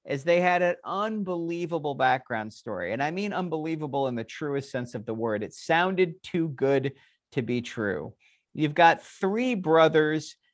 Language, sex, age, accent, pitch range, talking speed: English, male, 50-69, American, 120-160 Hz, 165 wpm